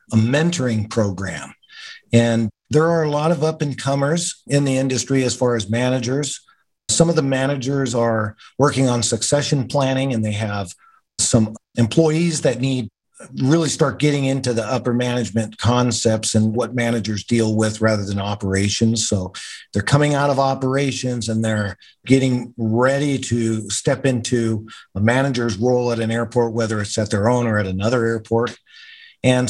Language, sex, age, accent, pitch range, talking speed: English, male, 50-69, American, 110-130 Hz, 165 wpm